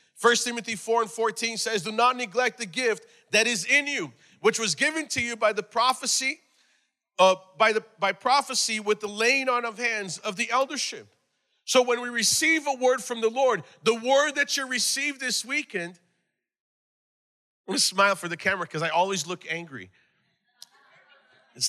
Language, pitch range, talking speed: English, 180-225 Hz, 180 wpm